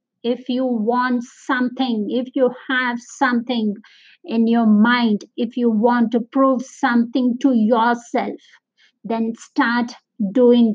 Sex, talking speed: female, 125 wpm